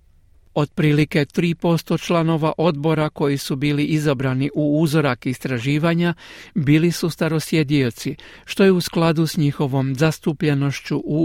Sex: male